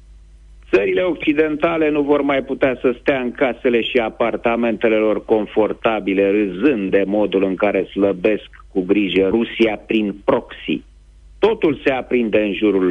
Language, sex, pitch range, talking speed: Romanian, male, 95-150 Hz, 140 wpm